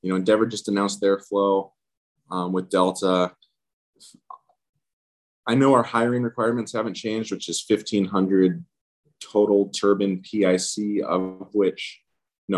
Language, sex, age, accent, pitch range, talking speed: English, male, 20-39, American, 85-105 Hz, 125 wpm